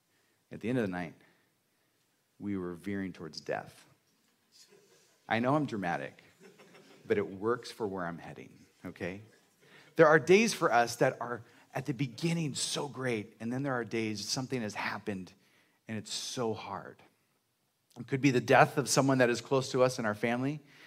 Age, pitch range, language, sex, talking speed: 40-59, 105-130 Hz, English, male, 180 wpm